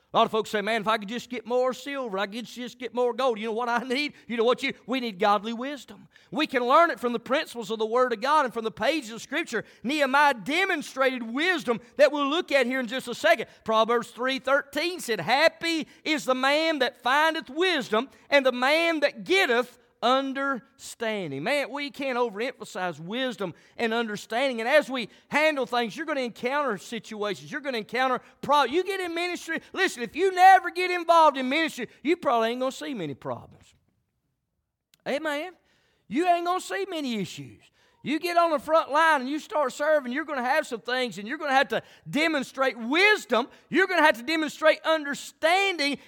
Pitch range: 230-305 Hz